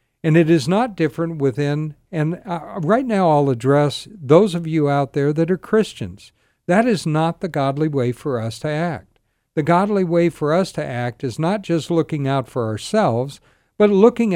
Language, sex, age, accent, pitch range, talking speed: English, male, 60-79, American, 130-175 Hz, 190 wpm